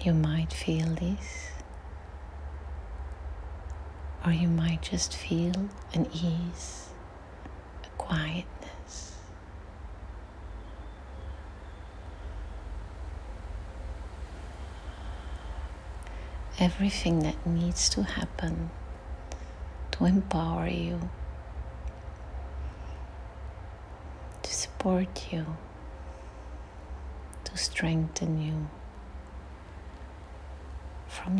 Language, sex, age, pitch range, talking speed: English, female, 30-49, 70-90 Hz, 55 wpm